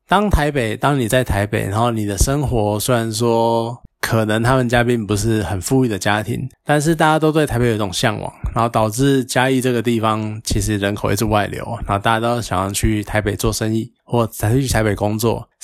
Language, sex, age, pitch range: Chinese, male, 20-39, 105-130 Hz